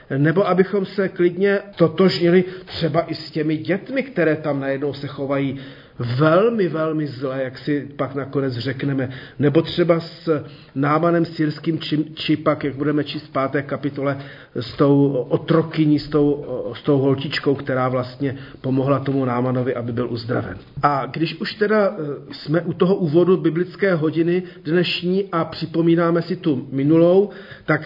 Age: 40-59